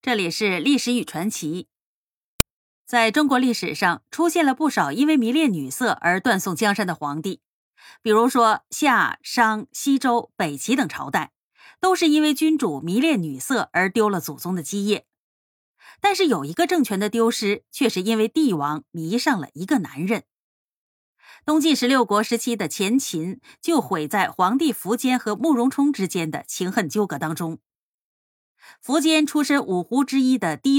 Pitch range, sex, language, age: 185-280 Hz, female, Chinese, 30-49